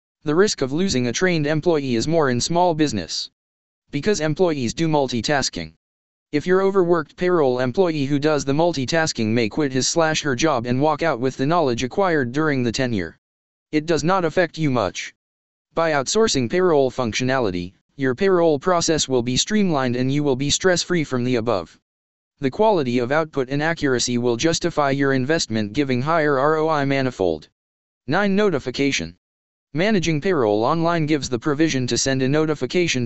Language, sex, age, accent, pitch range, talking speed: English, male, 20-39, American, 120-160 Hz, 165 wpm